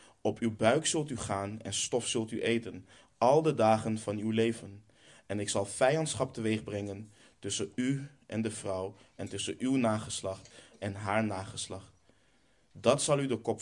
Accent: Dutch